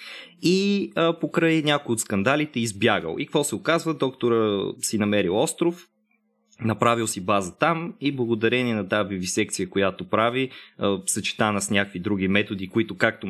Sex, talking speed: male, 155 wpm